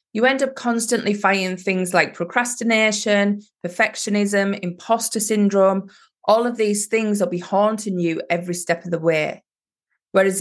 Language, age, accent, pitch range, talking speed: English, 20-39, British, 190-230 Hz, 145 wpm